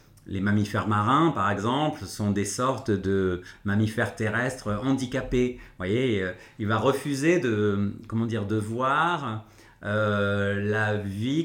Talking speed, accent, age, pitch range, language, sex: 130 wpm, French, 30-49, 100-125 Hz, French, male